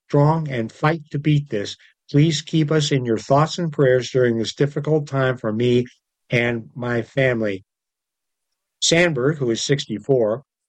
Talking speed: 150 wpm